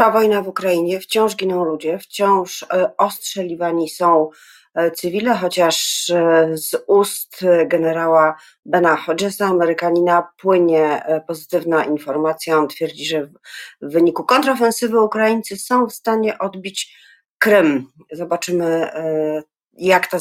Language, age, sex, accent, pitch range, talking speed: Polish, 40-59, female, native, 155-185 Hz, 105 wpm